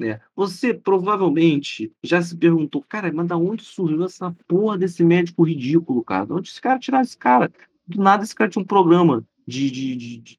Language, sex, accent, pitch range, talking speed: Portuguese, male, Brazilian, 140-195 Hz, 190 wpm